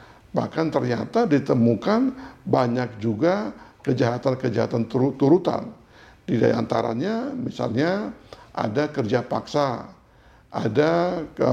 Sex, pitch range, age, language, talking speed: male, 120-160 Hz, 50-69, Indonesian, 75 wpm